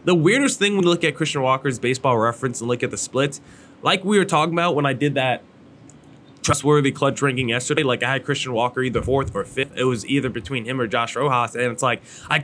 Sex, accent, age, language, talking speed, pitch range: male, American, 20-39, English, 240 wpm, 130-160 Hz